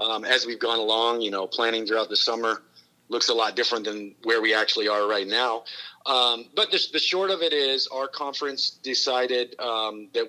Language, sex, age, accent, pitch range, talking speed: English, male, 40-59, American, 105-140 Hz, 205 wpm